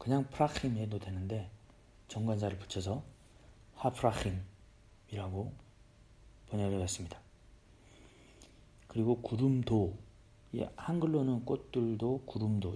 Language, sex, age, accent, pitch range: Korean, male, 40-59, native, 100-120 Hz